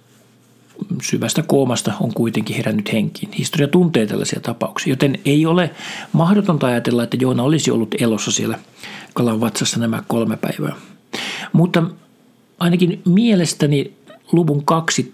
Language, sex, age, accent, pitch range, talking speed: Finnish, male, 50-69, native, 120-155 Hz, 125 wpm